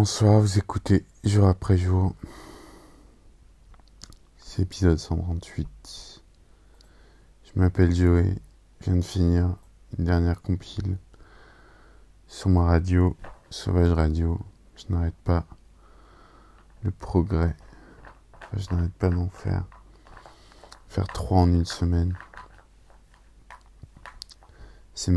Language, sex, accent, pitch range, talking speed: French, male, French, 85-95 Hz, 100 wpm